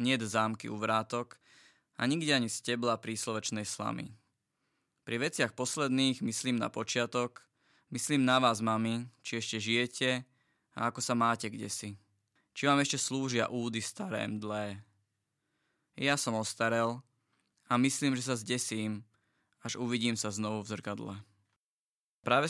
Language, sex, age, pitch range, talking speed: Slovak, male, 20-39, 110-130 Hz, 135 wpm